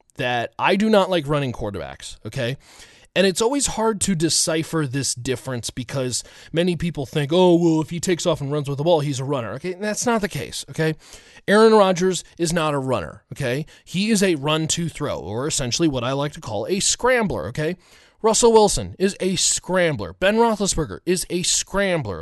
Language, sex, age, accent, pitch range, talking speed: English, male, 30-49, American, 145-210 Hz, 195 wpm